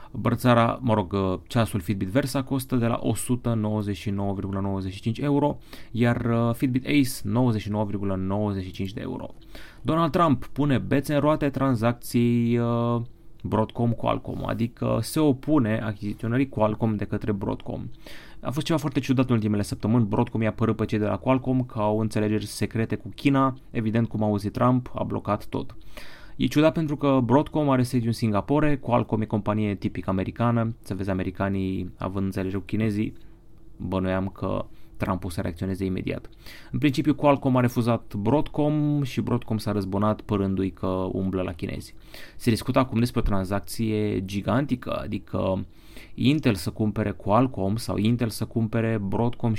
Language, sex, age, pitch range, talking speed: Romanian, male, 30-49, 100-125 Hz, 150 wpm